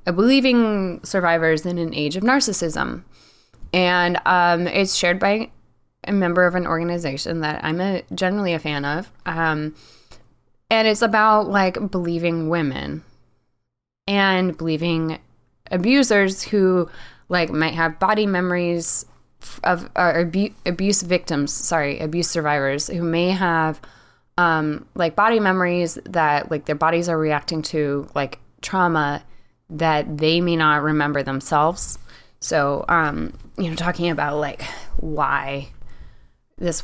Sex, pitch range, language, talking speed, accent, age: female, 150-180 Hz, English, 125 wpm, American, 10-29